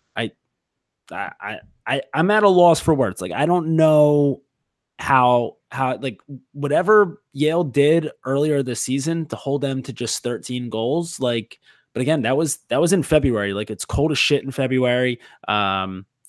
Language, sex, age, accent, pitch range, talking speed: English, male, 20-39, American, 110-140 Hz, 165 wpm